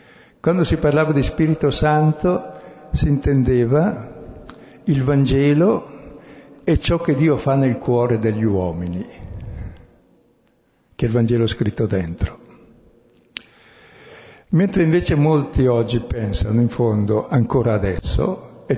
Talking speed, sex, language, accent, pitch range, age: 110 wpm, male, Italian, native, 110-145 Hz, 60-79